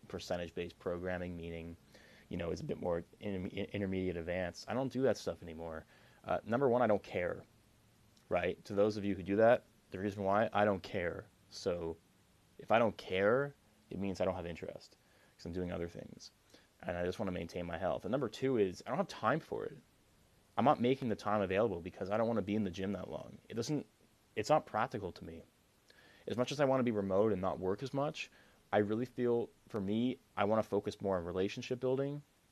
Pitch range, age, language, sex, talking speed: 90-115 Hz, 20-39, English, male, 225 wpm